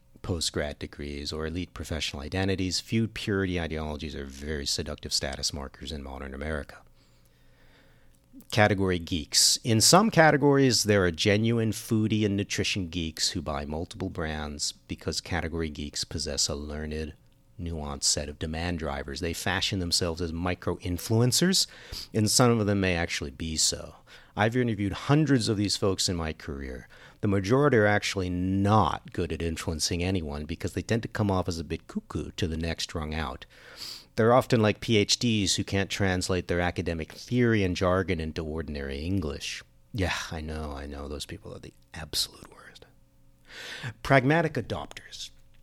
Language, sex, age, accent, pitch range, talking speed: English, male, 40-59, American, 80-105 Hz, 155 wpm